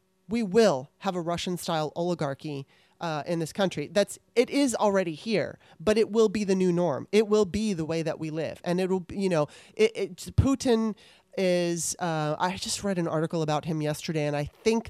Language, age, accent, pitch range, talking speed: English, 30-49, American, 165-210 Hz, 210 wpm